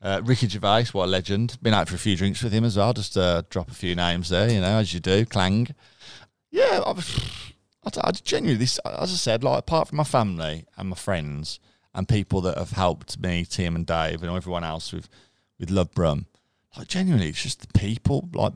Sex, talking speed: male, 225 wpm